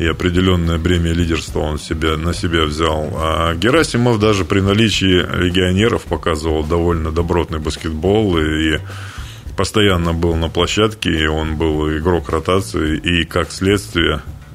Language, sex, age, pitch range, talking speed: Russian, male, 20-39, 80-95 Hz, 130 wpm